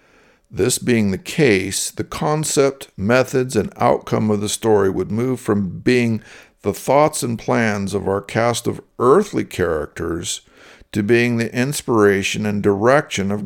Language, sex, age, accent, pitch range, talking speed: English, male, 60-79, American, 100-120 Hz, 145 wpm